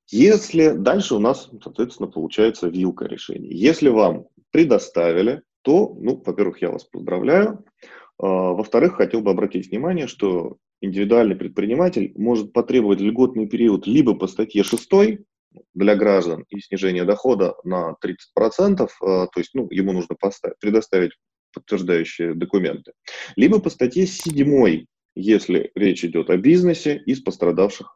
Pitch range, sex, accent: 95-130 Hz, male, native